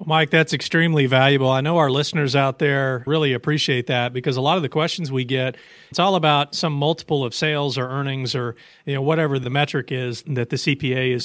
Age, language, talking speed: 40-59, English, 220 wpm